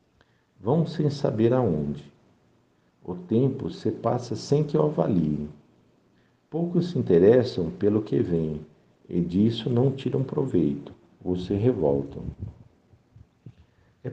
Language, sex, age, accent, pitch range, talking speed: Portuguese, male, 60-79, Brazilian, 90-130 Hz, 115 wpm